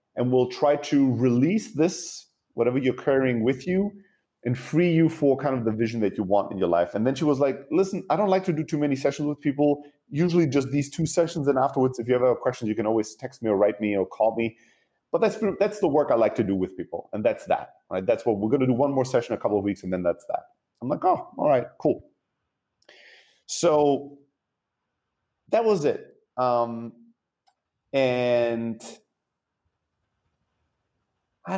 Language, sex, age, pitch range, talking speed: English, male, 30-49, 115-150 Hz, 205 wpm